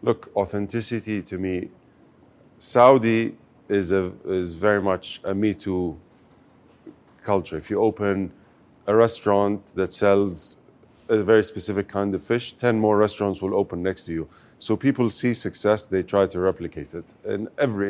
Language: English